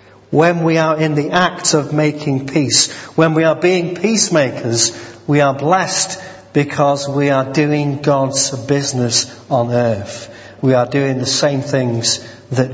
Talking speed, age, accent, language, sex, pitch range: 150 wpm, 40-59, British, English, male, 120-160 Hz